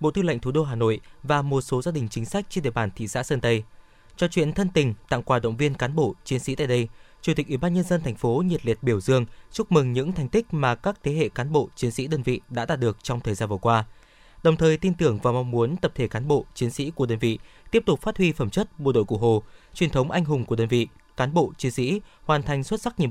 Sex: male